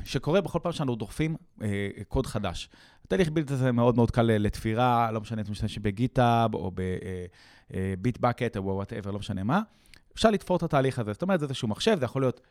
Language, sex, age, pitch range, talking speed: Hebrew, male, 30-49, 105-160 Hz, 210 wpm